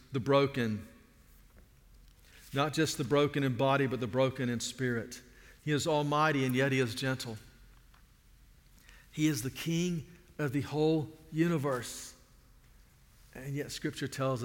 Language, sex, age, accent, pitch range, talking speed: English, male, 50-69, American, 125-150 Hz, 135 wpm